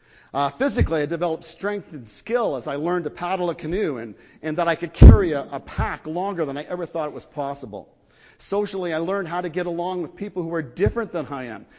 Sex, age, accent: male, 50-69, American